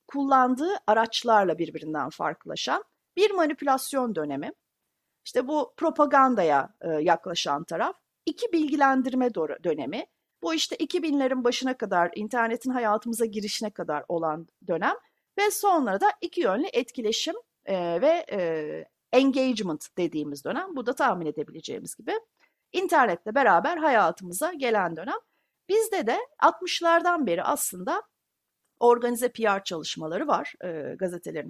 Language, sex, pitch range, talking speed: Turkish, female, 200-315 Hz, 110 wpm